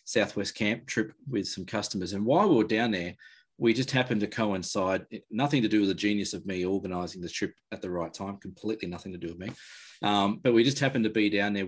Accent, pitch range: Australian, 95-115 Hz